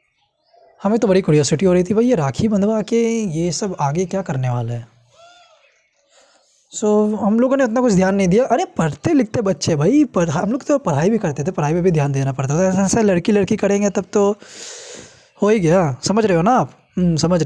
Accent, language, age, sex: native, Hindi, 20-39, male